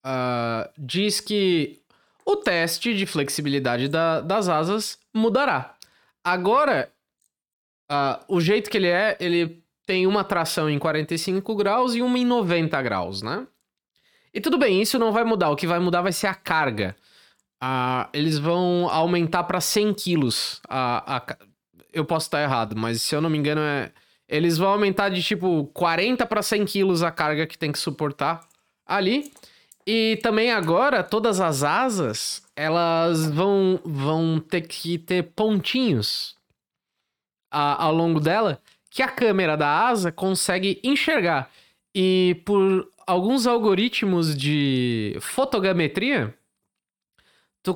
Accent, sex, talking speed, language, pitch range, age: Brazilian, male, 140 wpm, Portuguese, 155-205 Hz, 20-39